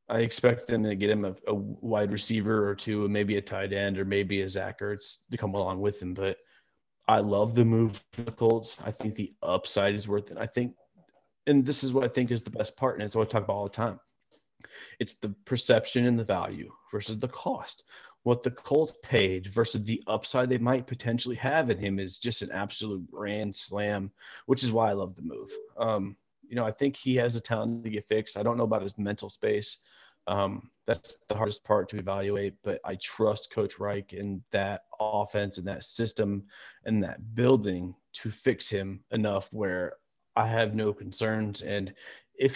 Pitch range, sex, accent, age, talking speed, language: 100-115 Hz, male, American, 30-49, 210 wpm, English